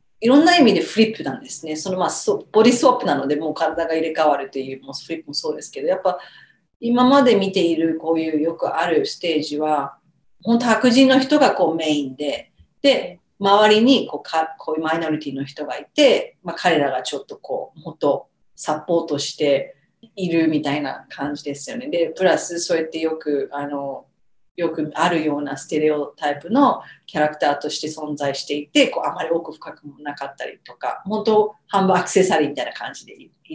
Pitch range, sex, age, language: 150-210 Hz, female, 40-59, Japanese